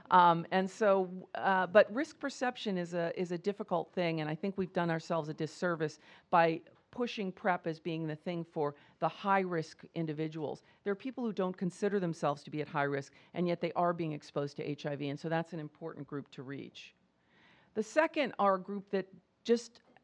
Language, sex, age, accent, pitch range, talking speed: English, female, 40-59, American, 155-195 Hz, 200 wpm